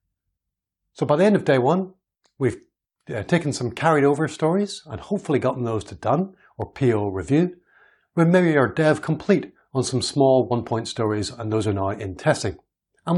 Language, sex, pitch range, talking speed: English, male, 110-165 Hz, 190 wpm